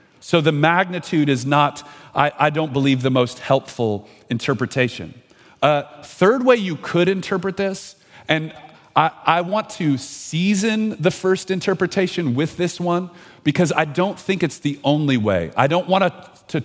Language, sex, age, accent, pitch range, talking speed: English, male, 40-59, American, 115-160 Hz, 160 wpm